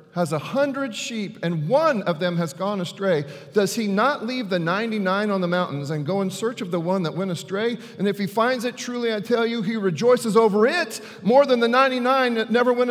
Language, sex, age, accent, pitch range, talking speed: English, male, 40-59, American, 120-185 Hz, 230 wpm